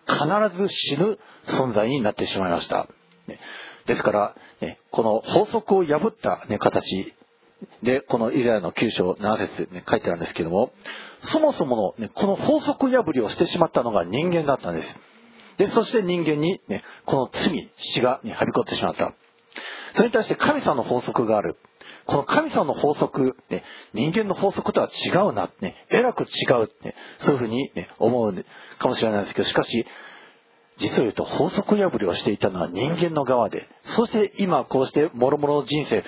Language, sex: Japanese, male